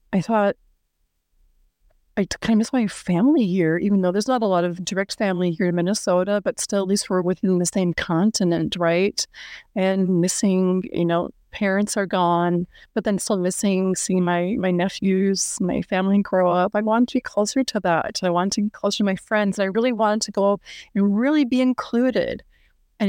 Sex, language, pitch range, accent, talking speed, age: female, English, 185-230 Hz, American, 200 wpm, 30-49